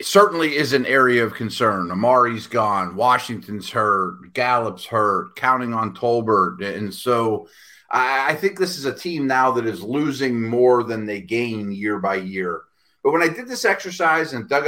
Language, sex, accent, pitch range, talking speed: English, male, American, 120-190 Hz, 175 wpm